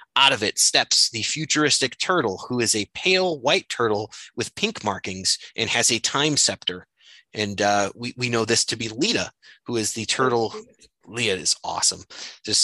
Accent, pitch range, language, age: American, 115-165 Hz, English, 30-49